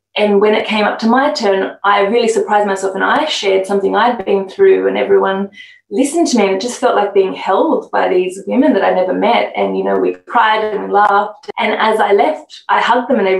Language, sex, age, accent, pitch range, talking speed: English, female, 20-39, Australian, 200-295 Hz, 240 wpm